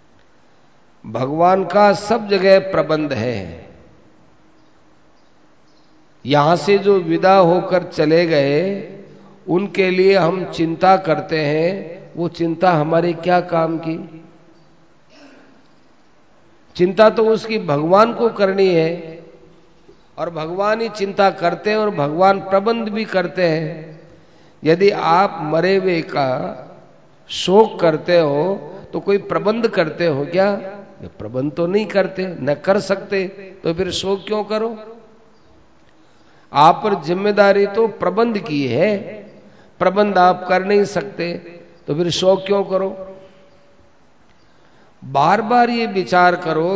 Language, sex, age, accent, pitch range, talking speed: Hindi, male, 50-69, native, 155-195 Hz, 120 wpm